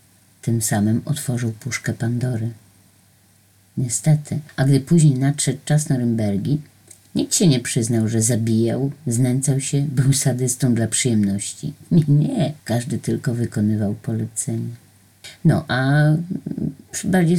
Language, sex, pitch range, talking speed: Polish, female, 125-165 Hz, 110 wpm